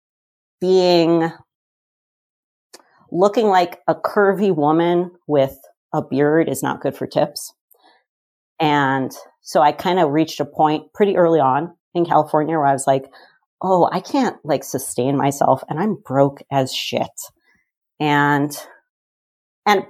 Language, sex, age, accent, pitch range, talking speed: English, female, 40-59, American, 140-185 Hz, 135 wpm